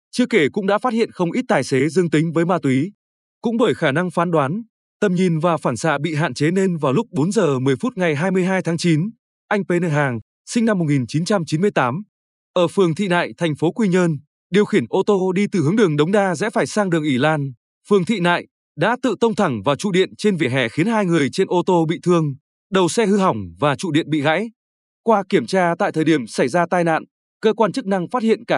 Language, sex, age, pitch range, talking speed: Vietnamese, male, 20-39, 160-205 Hz, 250 wpm